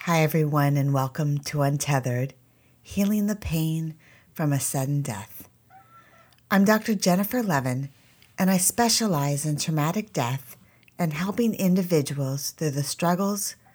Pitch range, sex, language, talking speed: 130-185 Hz, female, English, 125 wpm